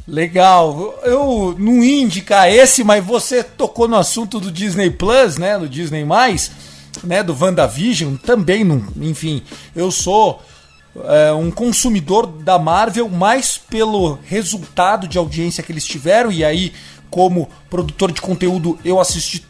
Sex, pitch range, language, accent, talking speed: male, 175-230 Hz, Portuguese, Brazilian, 135 wpm